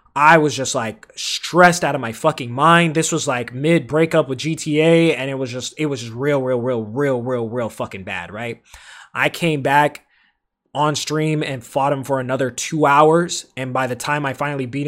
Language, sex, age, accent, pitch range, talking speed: English, male, 20-39, American, 130-170 Hz, 210 wpm